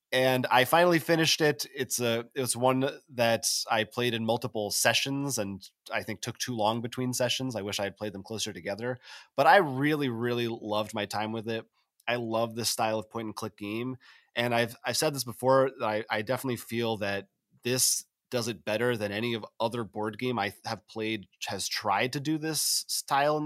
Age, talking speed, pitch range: 30-49, 205 wpm, 110-135 Hz